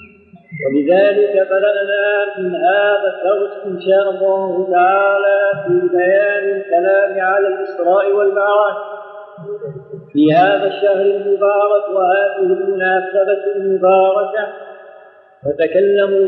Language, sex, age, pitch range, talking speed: Arabic, male, 50-69, 195-205 Hz, 85 wpm